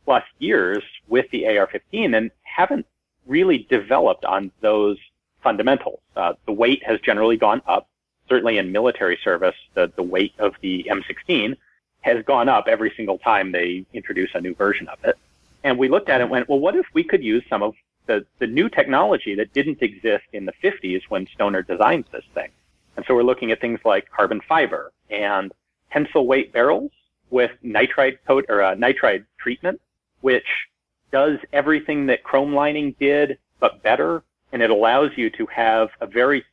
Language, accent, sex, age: English, American, male, 40-59